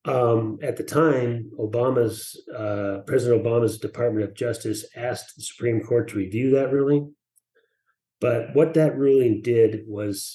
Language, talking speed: English, 145 wpm